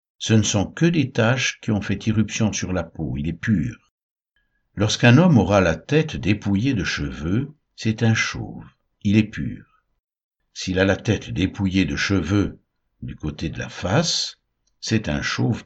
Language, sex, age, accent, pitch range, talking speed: French, male, 60-79, French, 85-115 Hz, 175 wpm